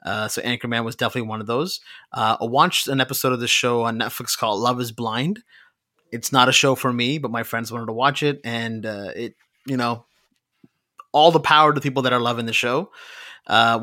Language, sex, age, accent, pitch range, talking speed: English, male, 30-49, American, 120-150 Hz, 220 wpm